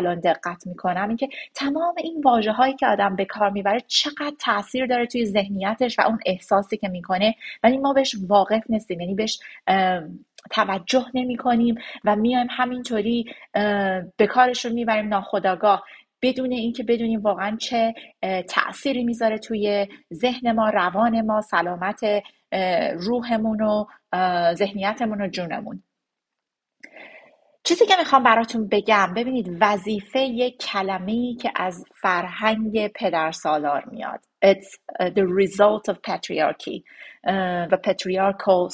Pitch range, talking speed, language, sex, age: 195-240 Hz, 120 wpm, Persian, female, 30-49